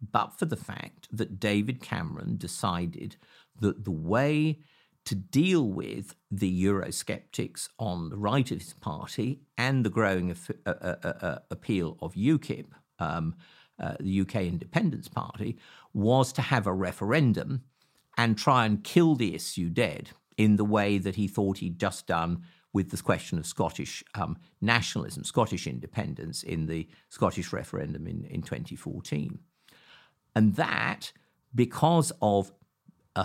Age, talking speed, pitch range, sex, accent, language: 50-69, 145 wpm, 95-130 Hz, male, British, English